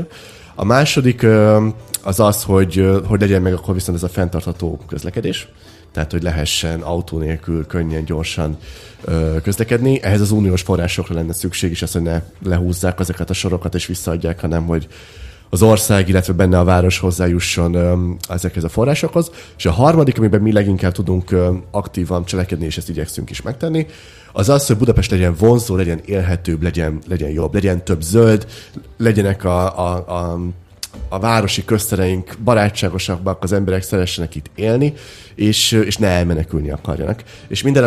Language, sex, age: Hungarian, male, 30-49